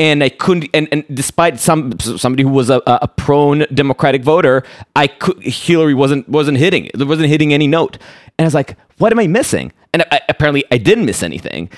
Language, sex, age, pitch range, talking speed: English, male, 30-49, 110-160 Hz, 215 wpm